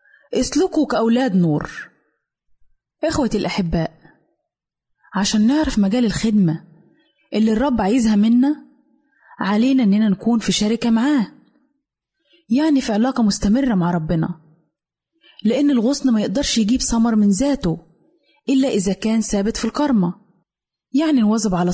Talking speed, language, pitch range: 115 wpm, Arabic, 195-250 Hz